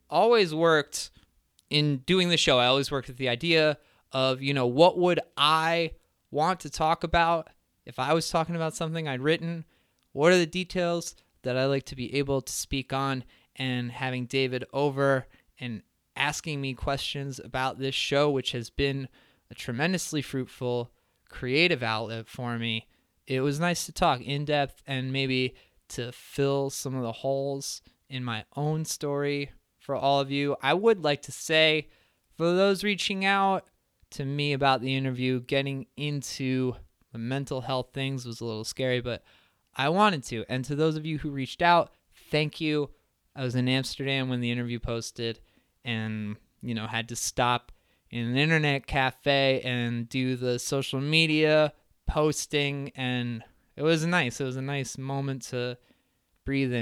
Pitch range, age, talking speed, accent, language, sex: 125-150 Hz, 20-39, 170 wpm, American, English, male